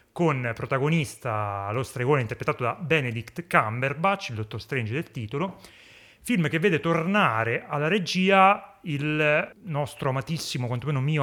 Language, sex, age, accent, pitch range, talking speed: Italian, male, 30-49, native, 120-155 Hz, 130 wpm